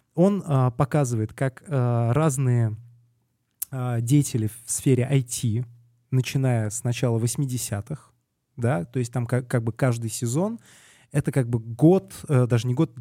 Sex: male